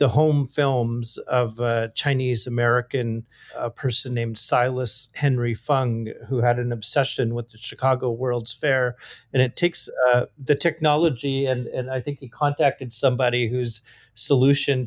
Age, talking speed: 40-59, 145 wpm